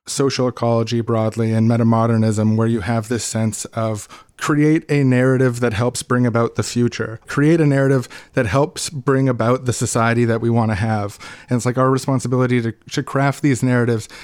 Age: 30-49